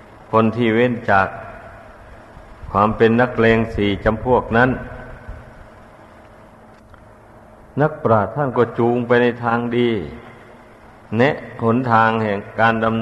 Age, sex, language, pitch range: 60-79, male, Thai, 110-125 Hz